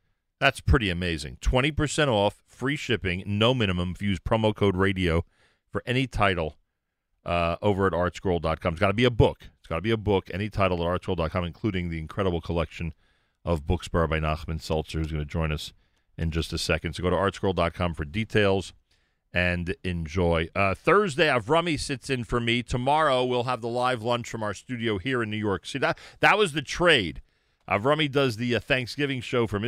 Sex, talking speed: male, 200 wpm